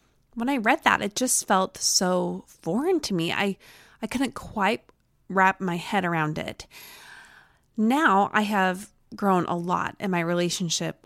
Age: 20-39